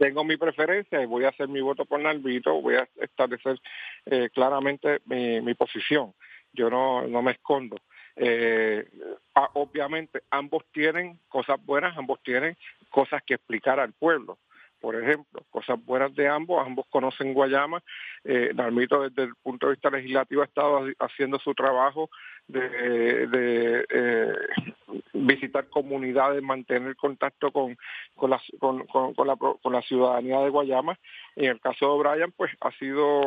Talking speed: 155 wpm